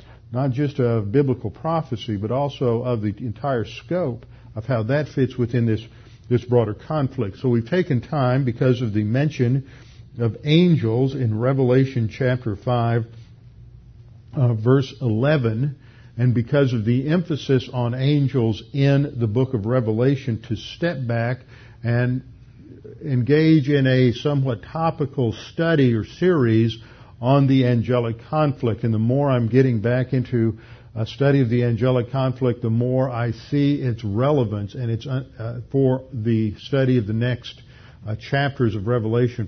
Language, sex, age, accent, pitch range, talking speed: English, male, 50-69, American, 115-135 Hz, 145 wpm